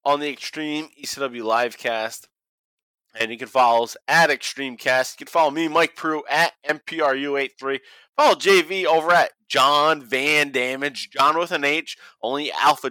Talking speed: 165 wpm